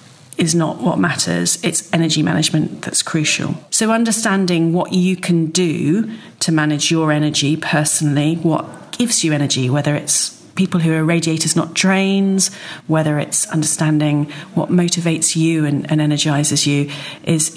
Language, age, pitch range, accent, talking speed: English, 40-59, 150-175 Hz, British, 145 wpm